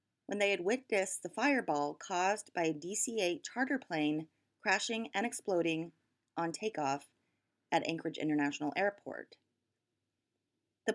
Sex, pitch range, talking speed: female, 155-220 Hz, 120 wpm